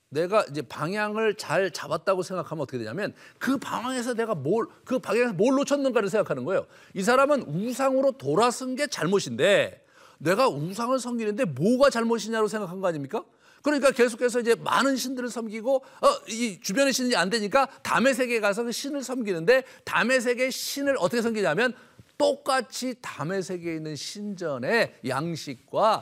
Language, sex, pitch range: Korean, male, 155-255 Hz